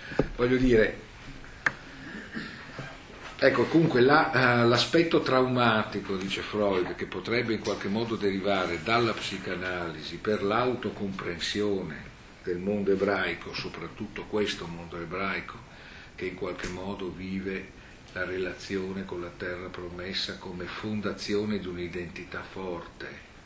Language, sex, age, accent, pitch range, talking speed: Italian, male, 50-69, native, 95-120 Hz, 105 wpm